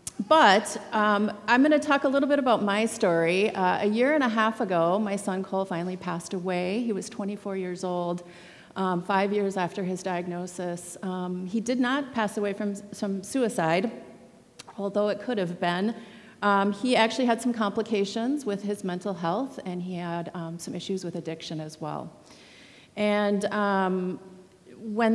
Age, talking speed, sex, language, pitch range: 40-59, 175 wpm, female, English, 180-220 Hz